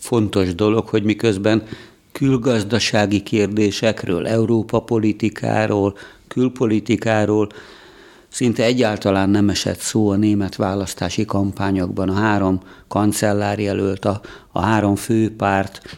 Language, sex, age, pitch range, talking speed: Hungarian, male, 50-69, 100-115 Hz, 95 wpm